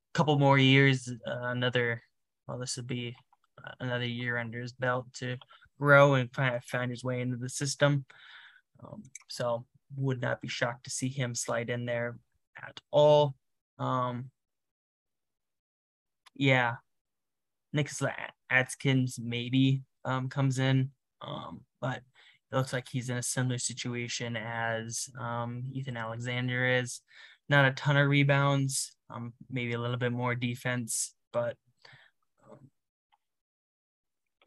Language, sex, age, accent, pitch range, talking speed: English, male, 10-29, American, 120-135 Hz, 130 wpm